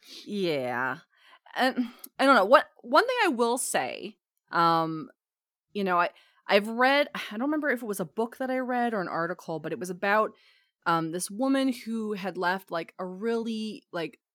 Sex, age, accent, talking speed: female, 30-49, American, 190 wpm